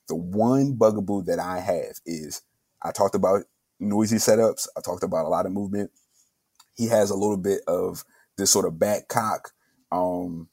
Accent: American